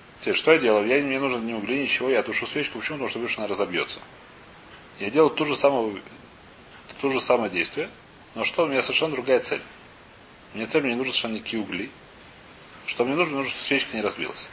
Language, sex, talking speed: Russian, male, 215 wpm